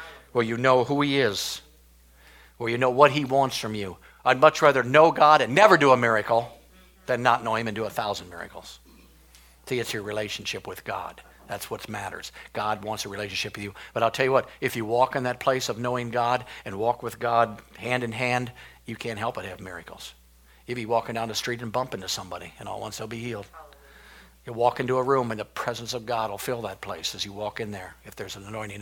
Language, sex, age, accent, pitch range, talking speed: English, male, 50-69, American, 105-125 Hz, 245 wpm